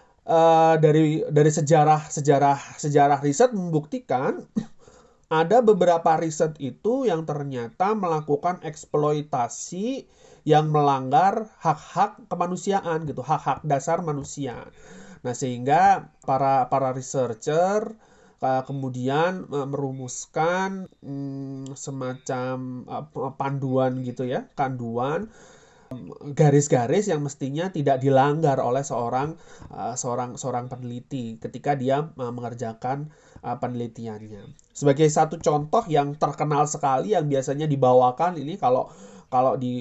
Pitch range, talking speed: 130-160 Hz, 110 wpm